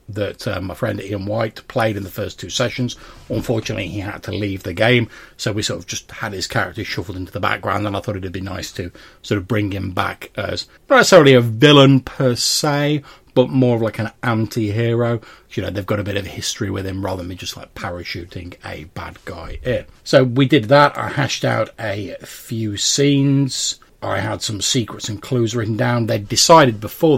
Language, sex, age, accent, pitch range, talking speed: English, male, 40-59, British, 100-125 Hz, 215 wpm